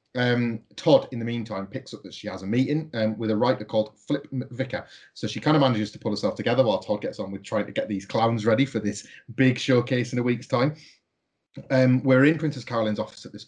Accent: British